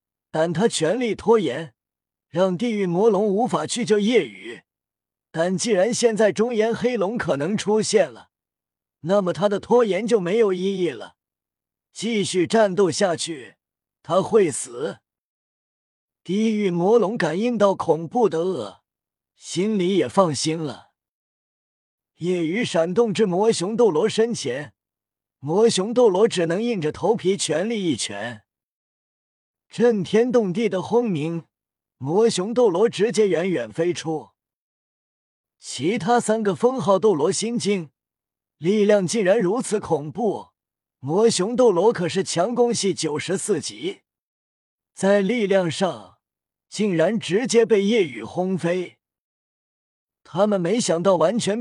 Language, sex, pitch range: Chinese, male, 165-225 Hz